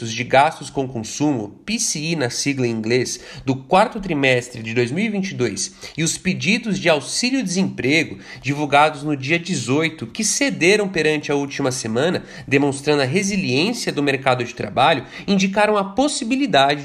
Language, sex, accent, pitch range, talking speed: Portuguese, male, Brazilian, 160-230 Hz, 140 wpm